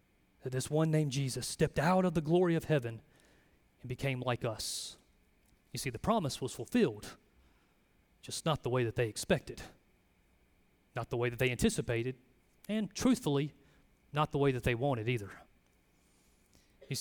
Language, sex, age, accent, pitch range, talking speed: English, male, 30-49, American, 115-150 Hz, 160 wpm